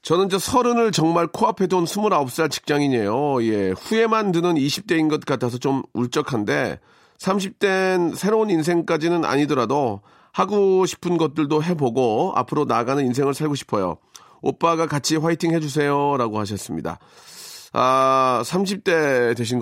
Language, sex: Korean, male